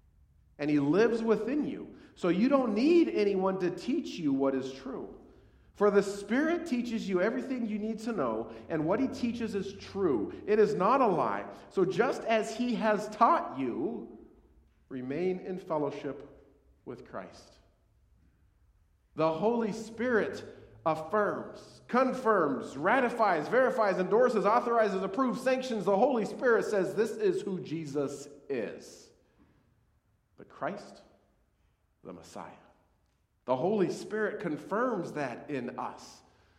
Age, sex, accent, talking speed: 40-59, male, American, 130 wpm